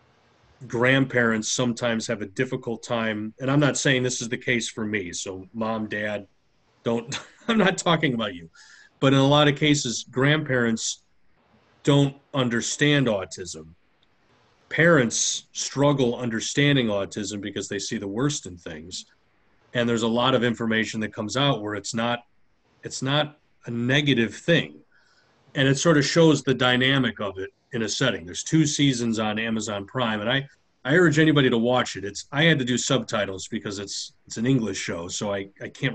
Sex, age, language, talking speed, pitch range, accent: male, 30-49, English, 175 wpm, 105-130 Hz, American